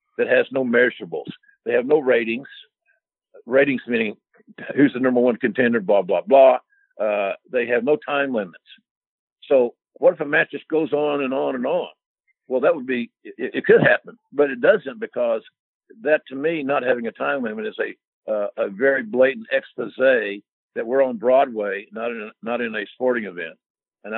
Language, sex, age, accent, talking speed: English, male, 60-79, American, 190 wpm